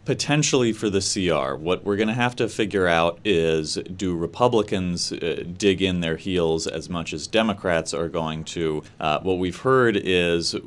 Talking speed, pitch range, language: 180 wpm, 80-100 Hz, English